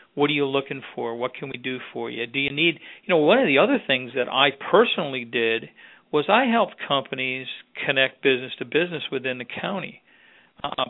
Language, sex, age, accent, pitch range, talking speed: English, male, 50-69, American, 130-155 Hz, 205 wpm